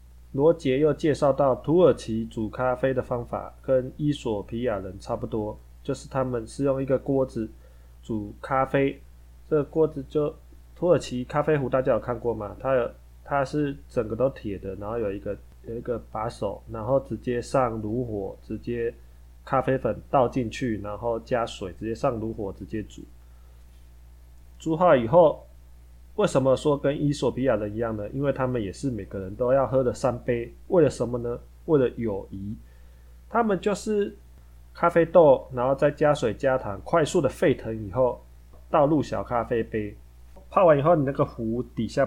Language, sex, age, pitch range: Chinese, male, 20-39, 90-135 Hz